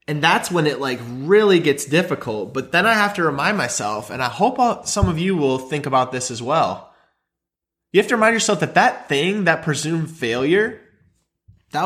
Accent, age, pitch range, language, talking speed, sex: American, 20-39, 145-220 Hz, English, 195 wpm, male